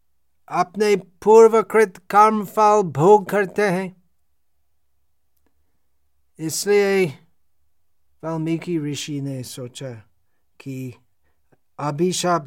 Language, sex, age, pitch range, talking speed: Hindi, male, 50-69, 135-210 Hz, 65 wpm